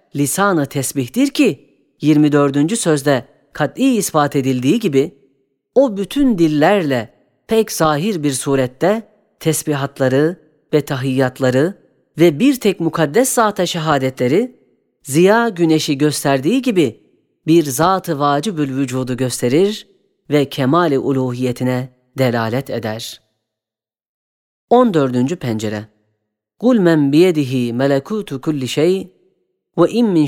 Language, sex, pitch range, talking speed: Turkish, female, 130-175 Hz, 95 wpm